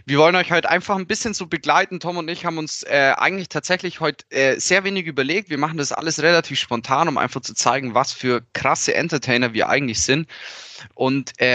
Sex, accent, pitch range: male, German, 120-155 Hz